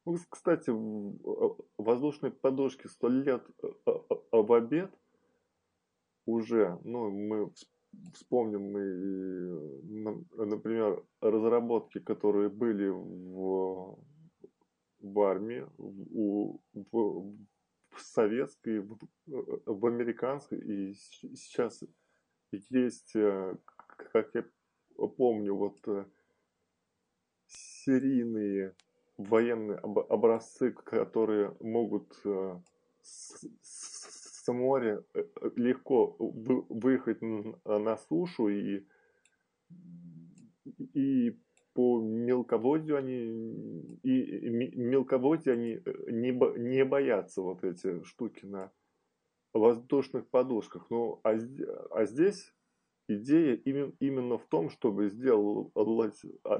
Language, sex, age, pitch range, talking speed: Russian, male, 20-39, 105-145 Hz, 80 wpm